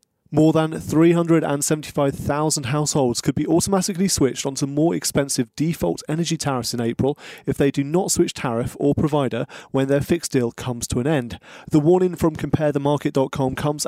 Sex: male